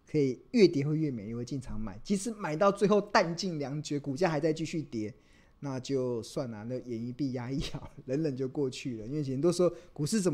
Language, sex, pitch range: Chinese, male, 115-150 Hz